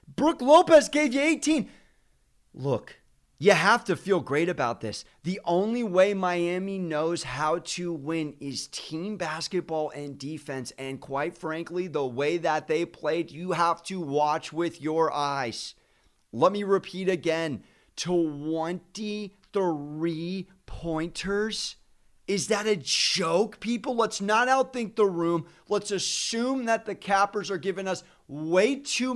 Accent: American